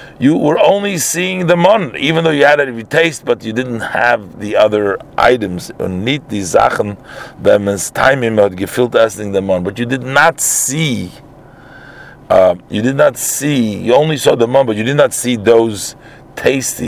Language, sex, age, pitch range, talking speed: English, male, 50-69, 115-155 Hz, 155 wpm